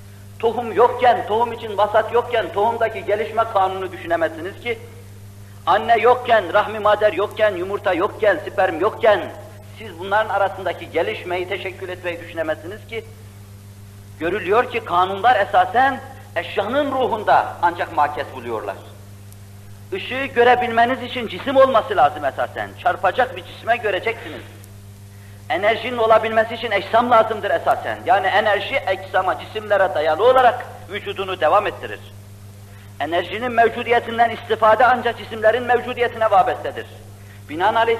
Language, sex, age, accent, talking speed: Turkish, male, 50-69, native, 110 wpm